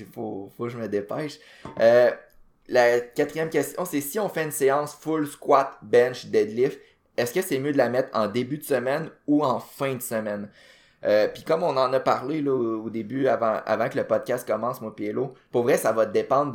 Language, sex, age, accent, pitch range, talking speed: French, male, 20-39, Canadian, 105-135 Hz, 220 wpm